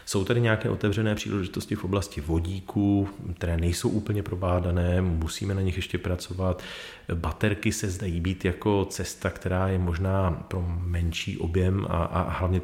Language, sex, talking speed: Czech, male, 150 wpm